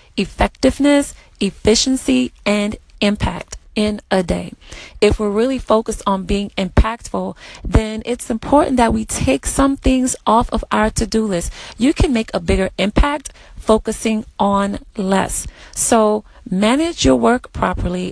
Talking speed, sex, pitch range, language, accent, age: 135 wpm, female, 205-245 Hz, English, American, 30-49